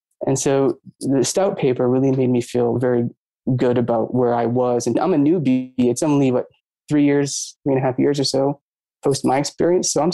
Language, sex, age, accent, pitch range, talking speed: English, male, 20-39, American, 125-150 Hz, 215 wpm